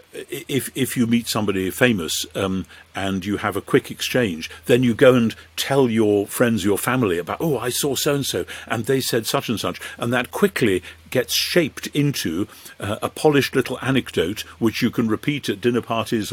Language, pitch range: English, 105-135 Hz